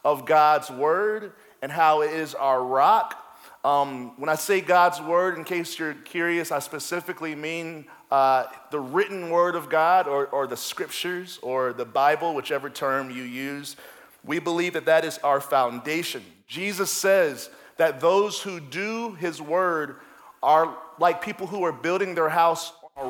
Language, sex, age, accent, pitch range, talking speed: English, male, 40-59, American, 150-180 Hz, 165 wpm